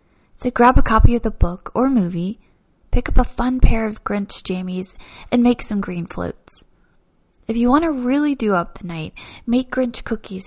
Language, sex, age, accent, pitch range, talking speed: English, female, 20-39, American, 185-240 Hz, 195 wpm